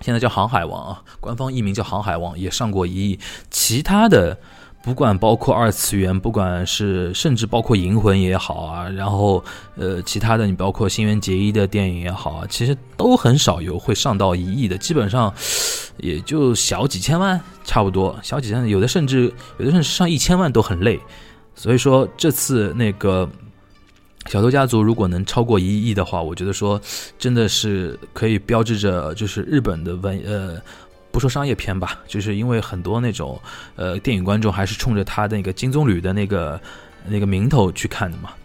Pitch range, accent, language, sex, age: 95-115 Hz, native, Chinese, male, 20-39